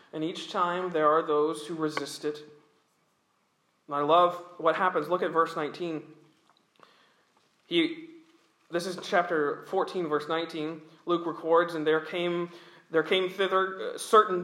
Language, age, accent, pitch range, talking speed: English, 40-59, American, 170-220 Hz, 140 wpm